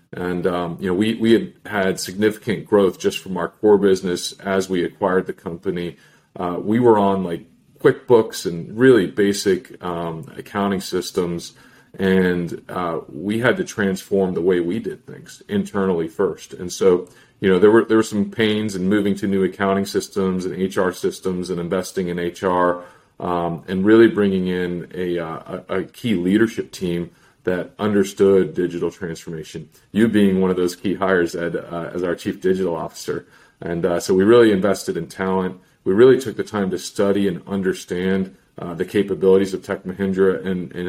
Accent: American